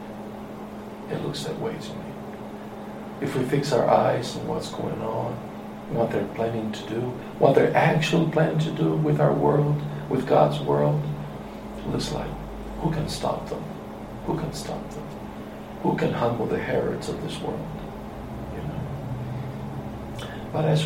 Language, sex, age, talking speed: English, male, 60-79, 150 wpm